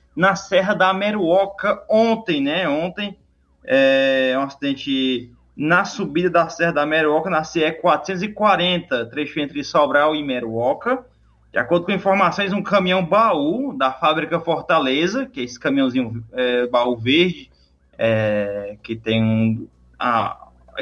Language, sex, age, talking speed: Portuguese, male, 20-39, 135 wpm